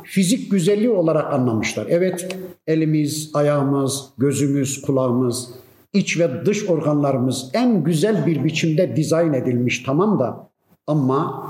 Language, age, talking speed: Turkish, 50-69, 115 wpm